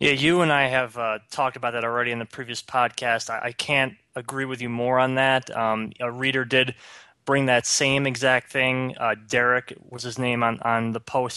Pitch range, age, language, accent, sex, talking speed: 115-135 Hz, 20-39, English, American, male, 215 wpm